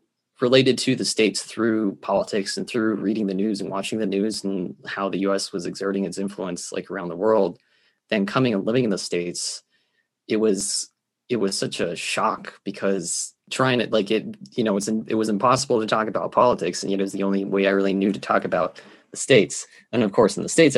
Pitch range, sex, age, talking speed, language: 100-120 Hz, male, 20-39, 225 wpm, English